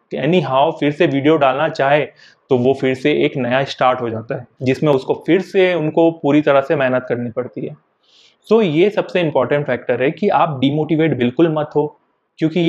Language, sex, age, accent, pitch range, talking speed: Hindi, male, 30-49, native, 135-170 Hz, 205 wpm